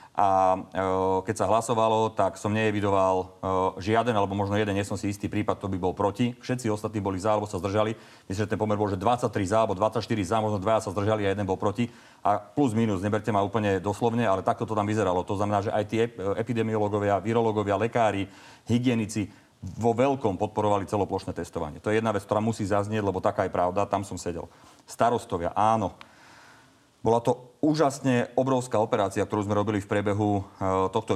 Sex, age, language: male, 40-59, Slovak